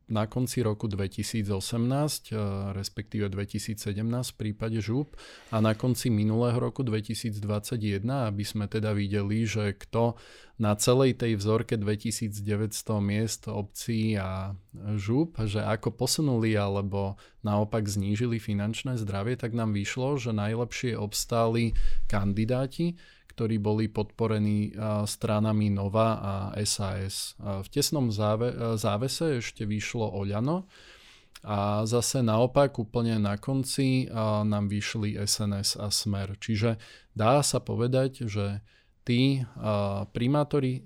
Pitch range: 105-125 Hz